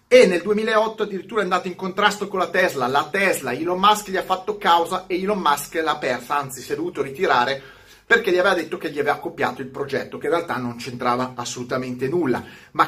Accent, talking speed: native, 220 wpm